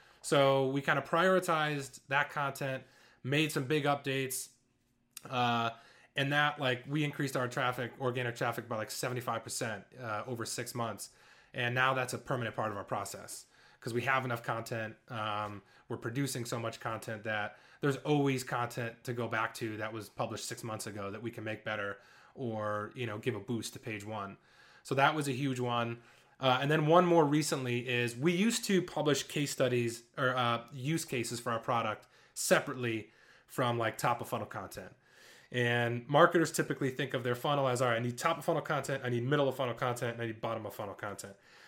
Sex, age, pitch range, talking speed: male, 20-39, 115-145 Hz, 200 wpm